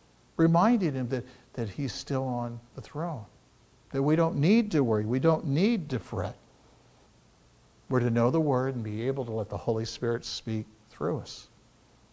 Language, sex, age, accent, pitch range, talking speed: English, male, 60-79, American, 115-165 Hz, 180 wpm